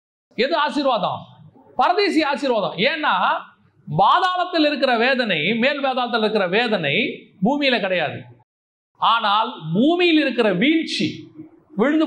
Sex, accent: male, native